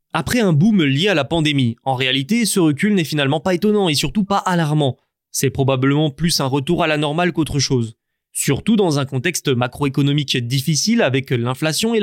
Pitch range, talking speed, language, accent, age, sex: 135-195 Hz, 190 wpm, French, French, 20-39, male